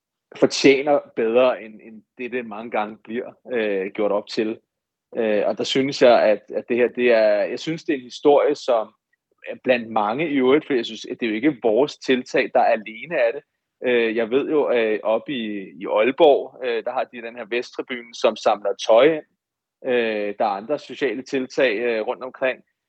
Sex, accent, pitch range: male, native, 120-160 Hz